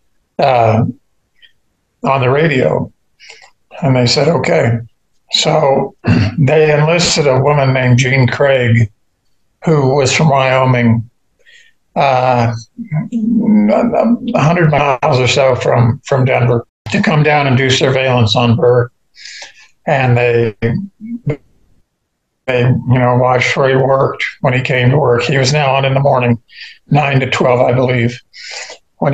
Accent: American